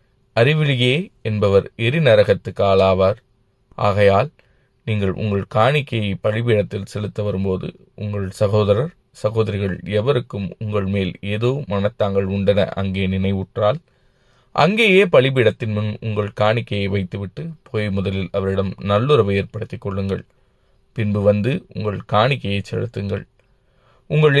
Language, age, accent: Tamil, 20-39, native